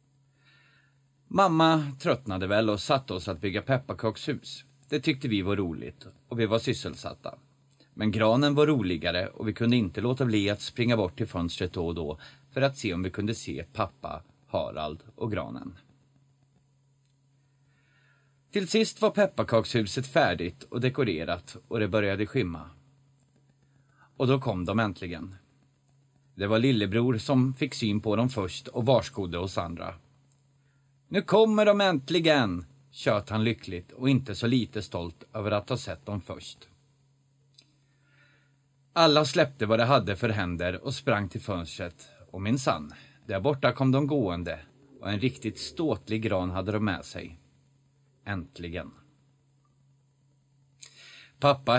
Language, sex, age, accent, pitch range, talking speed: Swedish, male, 30-49, native, 100-135 Hz, 145 wpm